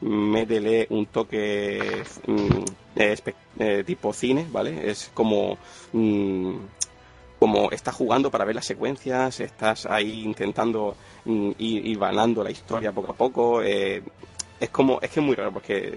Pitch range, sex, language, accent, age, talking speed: 100-115 Hz, male, Spanish, Spanish, 30-49, 155 wpm